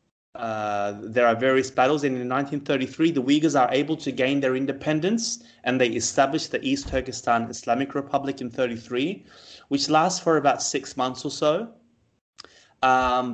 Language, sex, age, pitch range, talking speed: English, male, 30-49, 110-135 Hz, 155 wpm